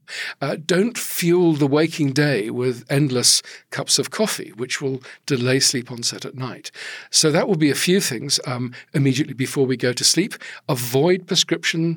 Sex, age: male, 50-69